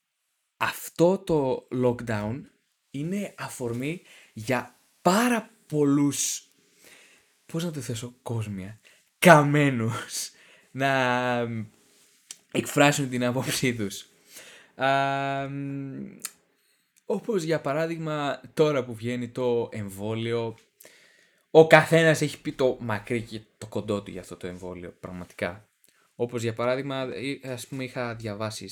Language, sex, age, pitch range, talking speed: Greek, male, 20-39, 105-135 Hz, 100 wpm